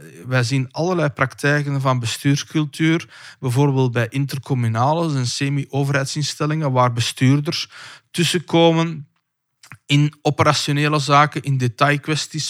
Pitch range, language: 125-150 Hz, Dutch